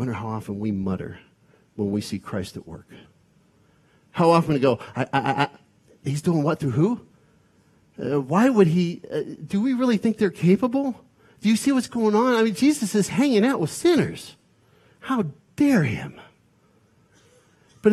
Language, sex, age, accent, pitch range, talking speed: English, male, 50-69, American, 135-200 Hz, 175 wpm